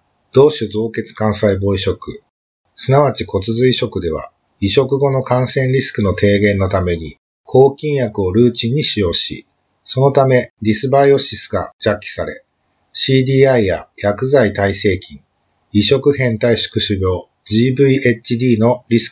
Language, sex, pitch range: Japanese, male, 100-130 Hz